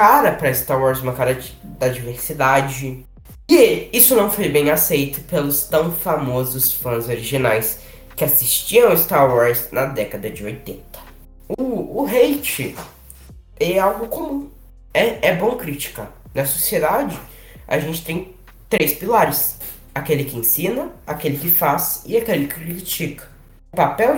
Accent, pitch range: Brazilian, 125-205 Hz